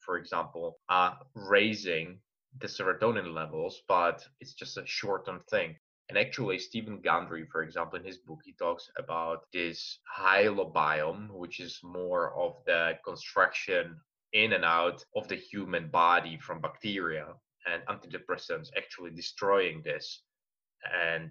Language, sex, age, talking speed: English, male, 20-39, 140 wpm